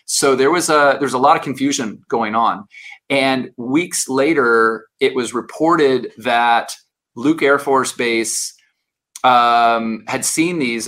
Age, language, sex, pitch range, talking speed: 30-49, English, male, 115-140 Hz, 145 wpm